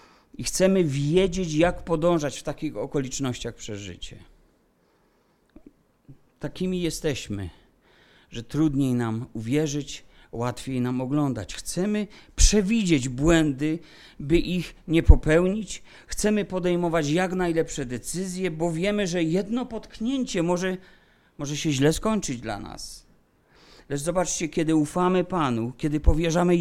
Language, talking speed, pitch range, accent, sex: Polish, 115 wpm, 135-185 Hz, native, male